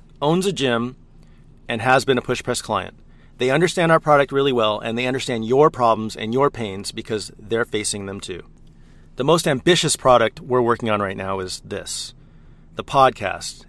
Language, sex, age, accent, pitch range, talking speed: English, male, 40-59, American, 110-145 Hz, 185 wpm